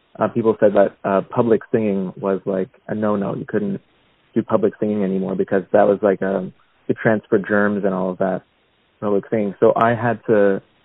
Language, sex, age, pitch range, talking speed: English, male, 30-49, 95-110 Hz, 200 wpm